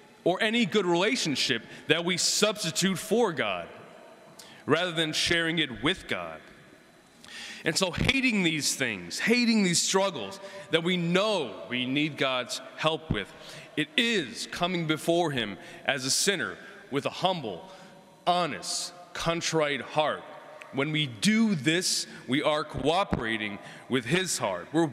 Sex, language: male, English